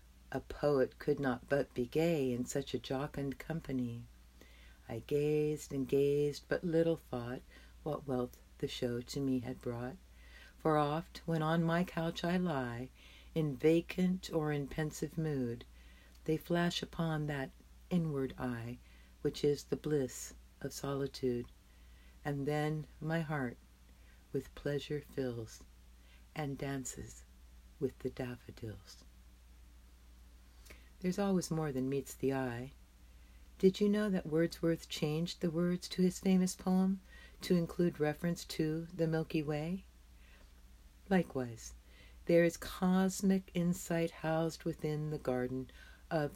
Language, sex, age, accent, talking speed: English, female, 60-79, American, 130 wpm